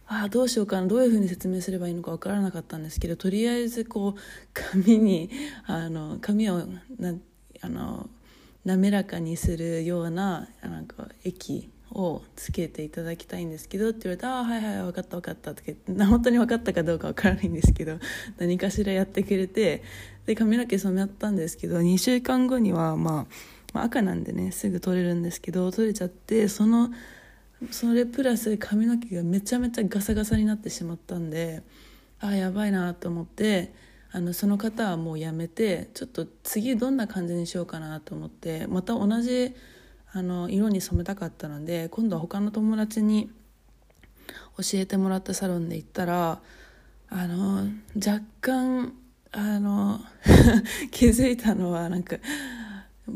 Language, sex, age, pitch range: Japanese, female, 20-39, 175-225 Hz